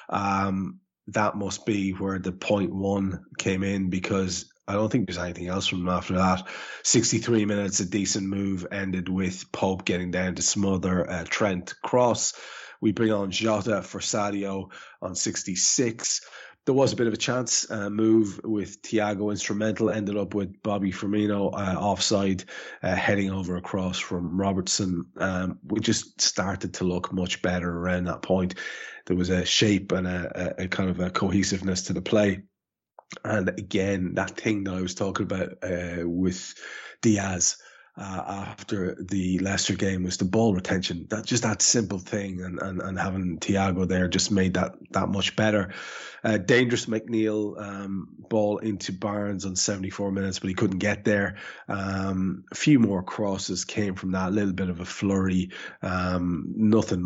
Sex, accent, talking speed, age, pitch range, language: male, Irish, 170 wpm, 20-39, 95-105 Hz, English